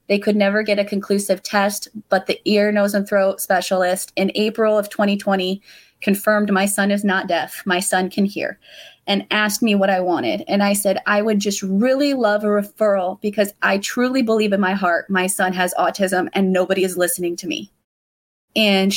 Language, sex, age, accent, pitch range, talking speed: English, female, 20-39, American, 190-210 Hz, 195 wpm